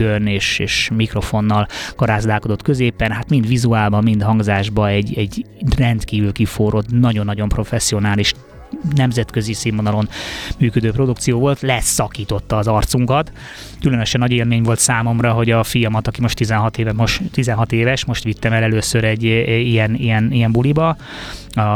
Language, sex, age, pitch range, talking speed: Hungarian, male, 20-39, 110-120 Hz, 125 wpm